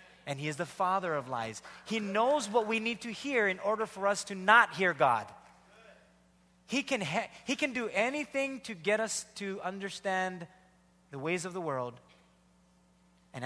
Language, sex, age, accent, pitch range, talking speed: English, male, 30-49, American, 135-215 Hz, 180 wpm